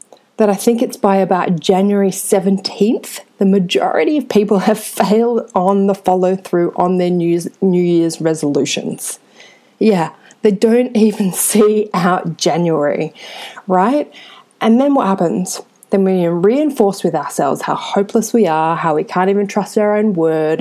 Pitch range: 170-225 Hz